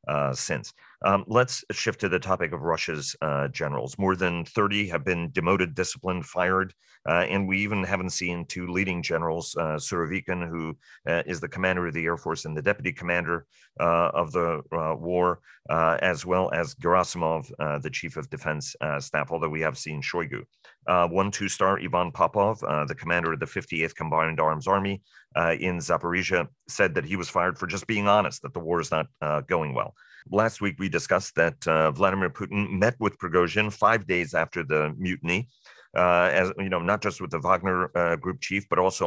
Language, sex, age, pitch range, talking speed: English, male, 40-59, 85-95 Hz, 200 wpm